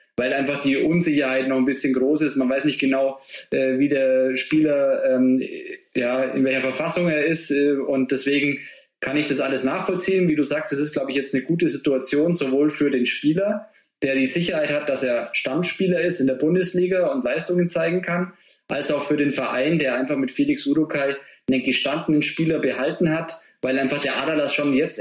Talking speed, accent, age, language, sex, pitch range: 190 wpm, German, 20-39, German, male, 135-170 Hz